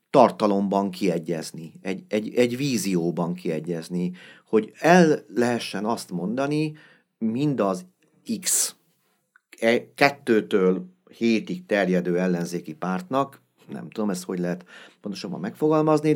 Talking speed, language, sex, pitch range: 100 wpm, Hungarian, male, 95-125 Hz